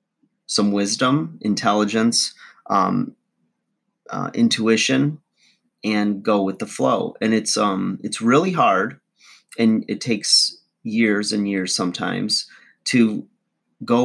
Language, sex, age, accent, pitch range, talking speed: English, male, 30-49, American, 100-115 Hz, 110 wpm